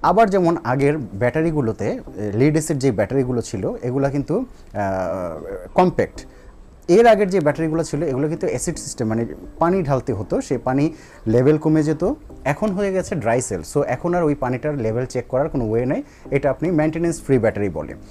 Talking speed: 125 wpm